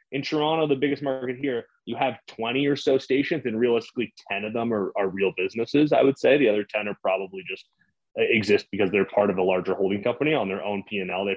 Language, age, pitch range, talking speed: English, 30-49, 110-145 Hz, 235 wpm